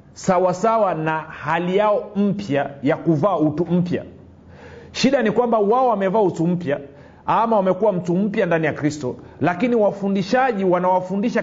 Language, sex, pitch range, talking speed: Swahili, male, 175-230 Hz, 140 wpm